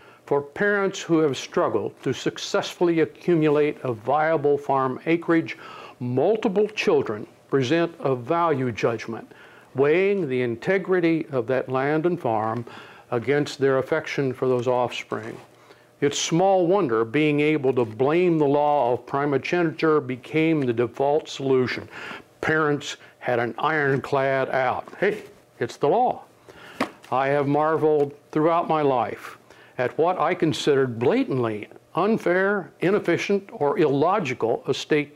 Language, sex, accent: English, male, American